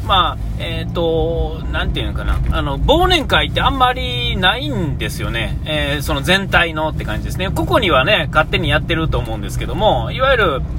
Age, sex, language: 30-49, male, Japanese